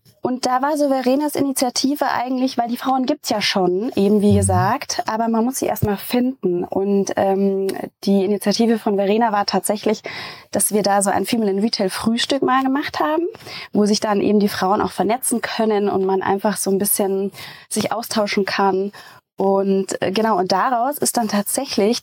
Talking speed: 190 wpm